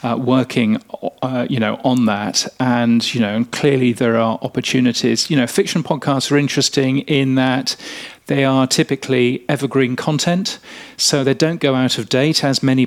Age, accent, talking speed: 40-59, British, 175 wpm